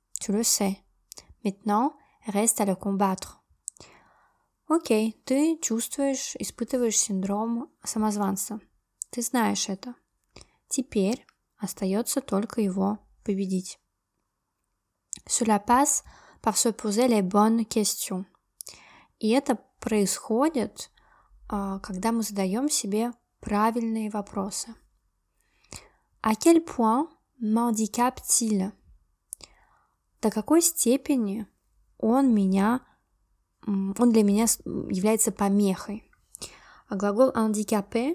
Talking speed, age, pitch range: 75 wpm, 20-39, 200-235 Hz